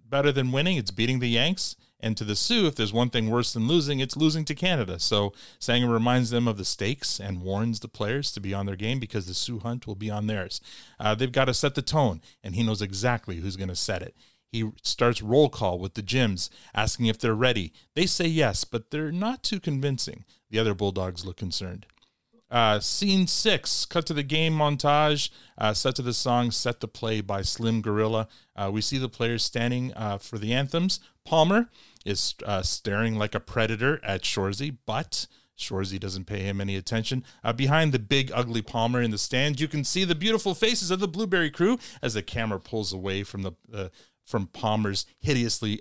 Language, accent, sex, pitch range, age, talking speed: English, American, male, 105-135 Hz, 30-49, 210 wpm